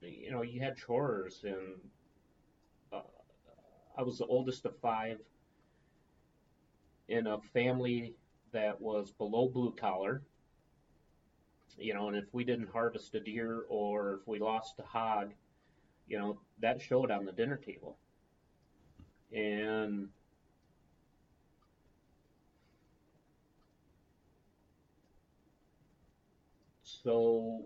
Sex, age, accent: male, 40-59, American